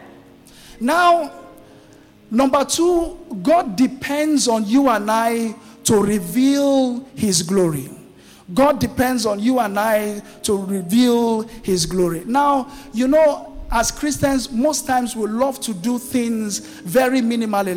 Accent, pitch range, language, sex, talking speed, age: Nigerian, 185-240 Hz, English, male, 125 wpm, 50-69